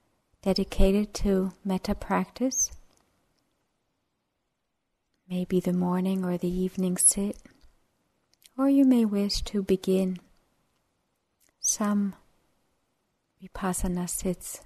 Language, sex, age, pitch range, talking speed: English, female, 40-59, 180-200 Hz, 80 wpm